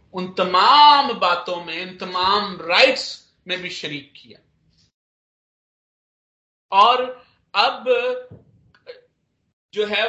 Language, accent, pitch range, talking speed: Hindi, native, 165-215 Hz, 90 wpm